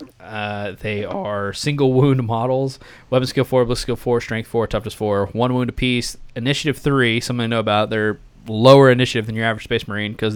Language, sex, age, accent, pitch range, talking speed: English, male, 20-39, American, 105-130 Hz, 195 wpm